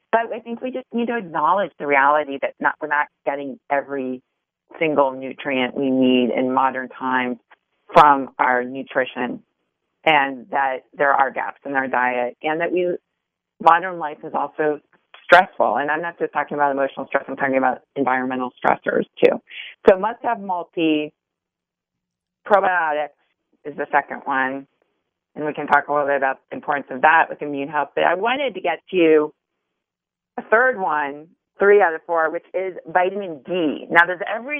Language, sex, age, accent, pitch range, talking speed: English, female, 40-59, American, 135-165 Hz, 175 wpm